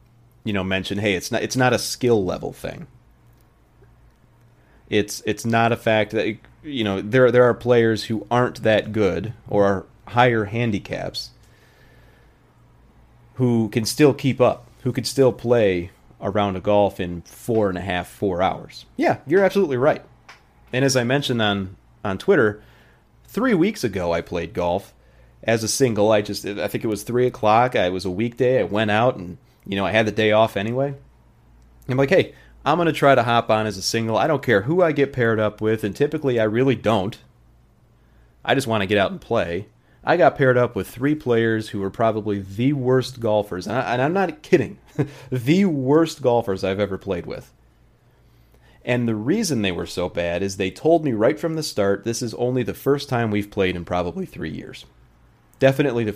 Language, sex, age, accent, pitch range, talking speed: English, male, 30-49, American, 100-125 Hz, 200 wpm